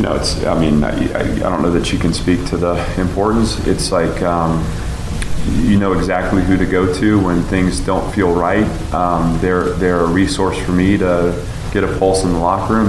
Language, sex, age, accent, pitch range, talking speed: English, male, 30-49, American, 85-95 Hz, 210 wpm